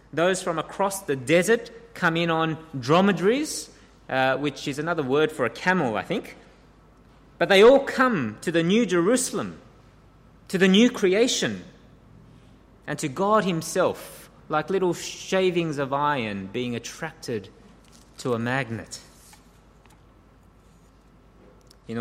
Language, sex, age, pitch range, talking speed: English, male, 20-39, 115-165 Hz, 125 wpm